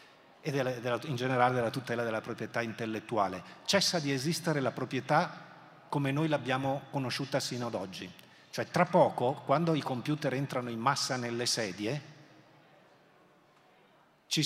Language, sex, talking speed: Italian, male, 135 wpm